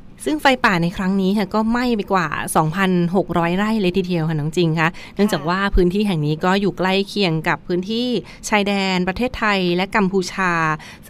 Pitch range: 170-205 Hz